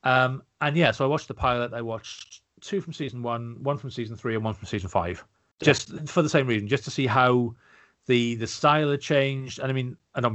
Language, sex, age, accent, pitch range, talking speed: English, male, 30-49, British, 105-130 Hz, 245 wpm